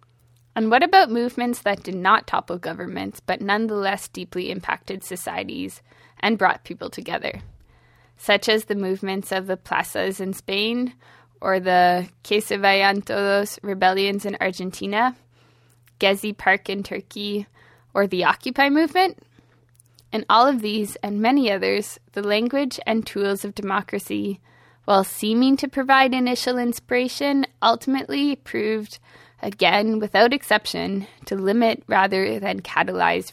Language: English